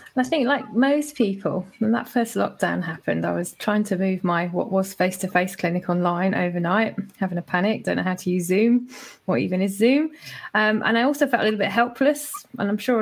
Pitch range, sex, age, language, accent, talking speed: 190-220 Hz, female, 30-49, English, British, 215 wpm